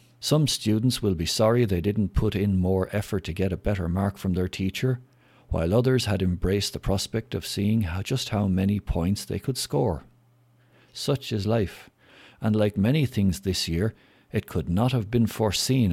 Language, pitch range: English, 90-115 Hz